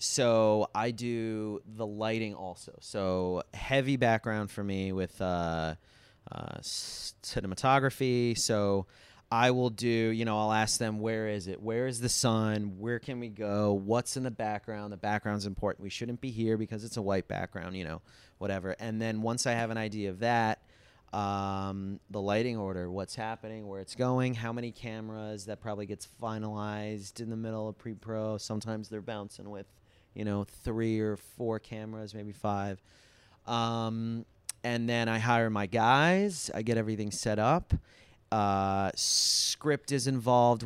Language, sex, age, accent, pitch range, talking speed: English, male, 30-49, American, 100-120 Hz, 165 wpm